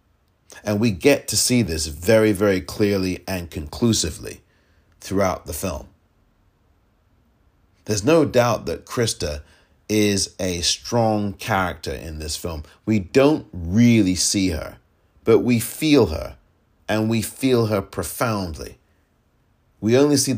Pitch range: 90-115 Hz